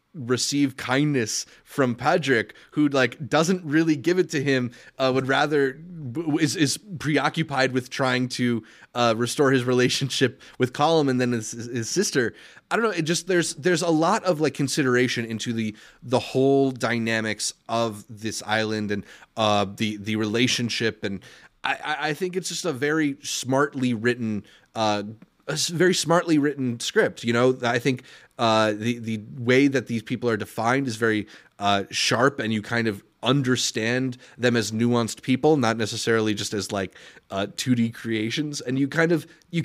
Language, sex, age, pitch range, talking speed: English, male, 20-39, 110-150 Hz, 175 wpm